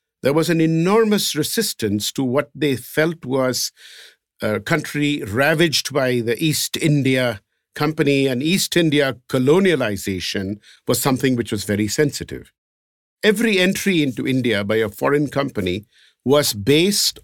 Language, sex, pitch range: English, male, 120-160 Hz